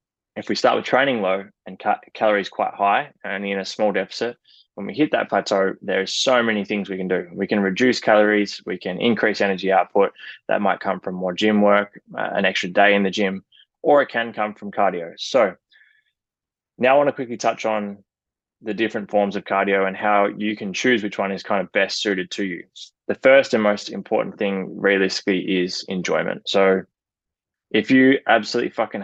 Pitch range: 95-105 Hz